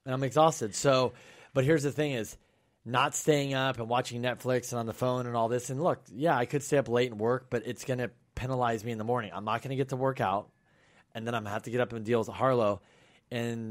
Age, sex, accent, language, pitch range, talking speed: 30-49, male, American, English, 110-125 Hz, 275 wpm